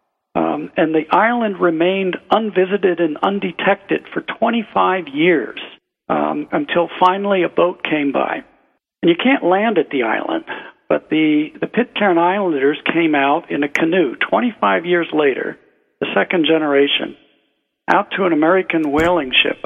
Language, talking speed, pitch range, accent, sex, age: English, 145 wpm, 145-215 Hz, American, male, 60-79